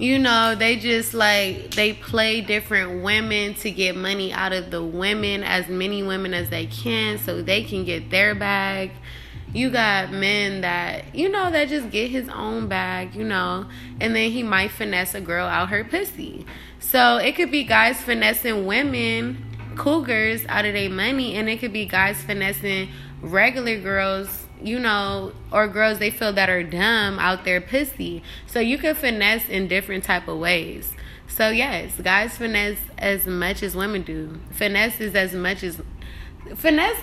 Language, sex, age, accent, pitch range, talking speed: English, female, 20-39, American, 185-230 Hz, 175 wpm